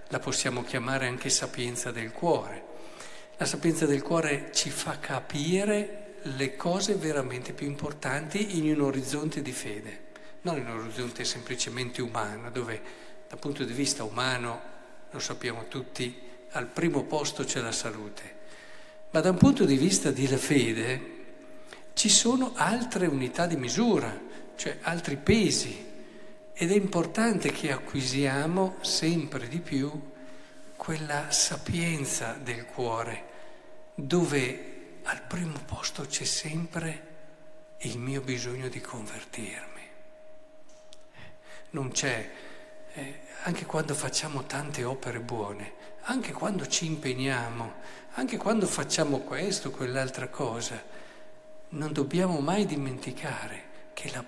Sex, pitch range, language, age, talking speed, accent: male, 130-185 Hz, Italian, 50-69, 120 wpm, native